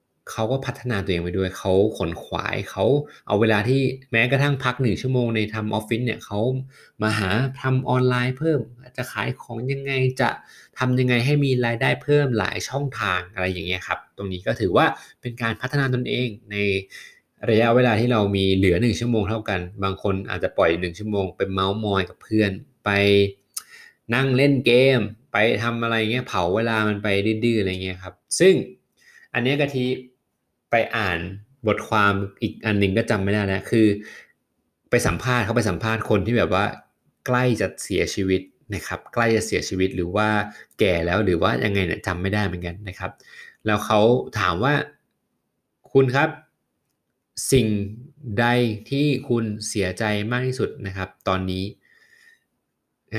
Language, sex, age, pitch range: Thai, male, 20-39, 100-125 Hz